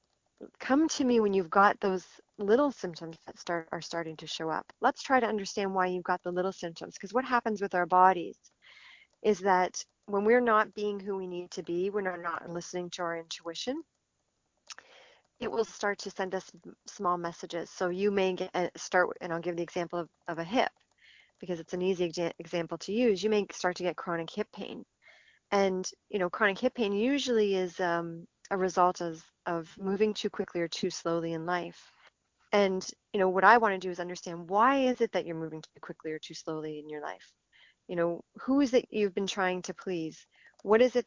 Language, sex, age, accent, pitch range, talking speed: English, female, 40-59, American, 175-210 Hz, 215 wpm